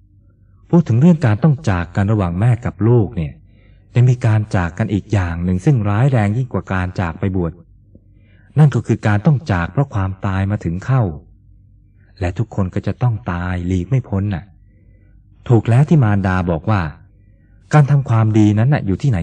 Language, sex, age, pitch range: Thai, male, 20-39, 95-115 Hz